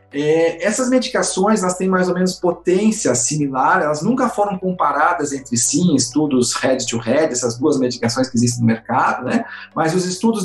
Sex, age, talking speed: male, 40-59, 180 wpm